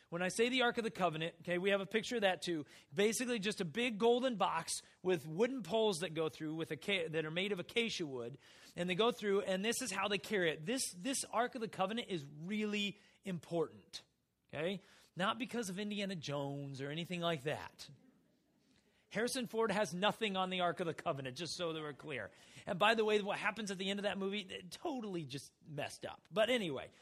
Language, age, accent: English, 30-49, American